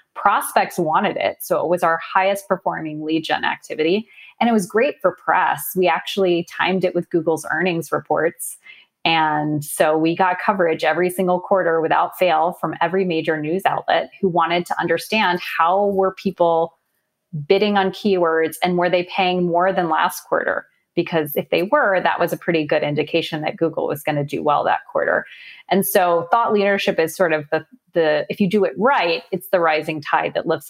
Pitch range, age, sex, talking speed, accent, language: 160-190 Hz, 30-49, female, 190 wpm, American, English